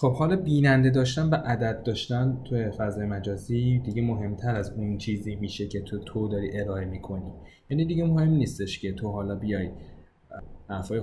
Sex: male